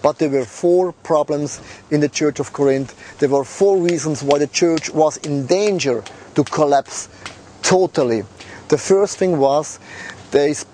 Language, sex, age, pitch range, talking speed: Czech, male, 30-49, 135-190 Hz, 155 wpm